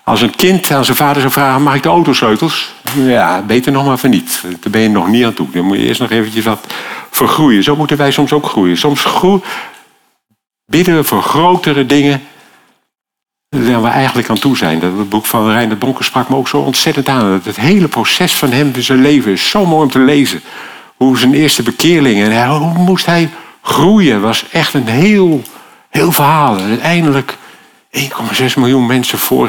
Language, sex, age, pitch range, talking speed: Dutch, male, 50-69, 120-150 Hz, 200 wpm